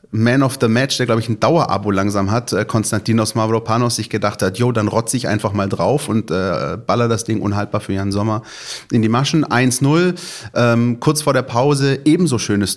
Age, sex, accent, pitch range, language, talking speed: 30-49, male, German, 105-125 Hz, German, 195 wpm